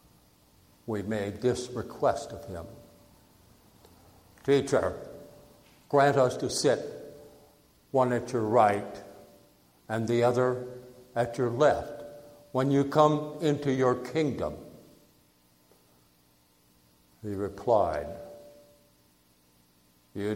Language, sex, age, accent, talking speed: English, male, 60-79, American, 90 wpm